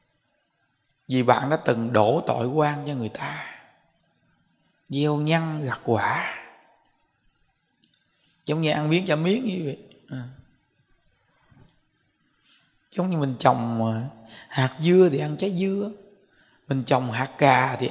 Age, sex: 20-39, male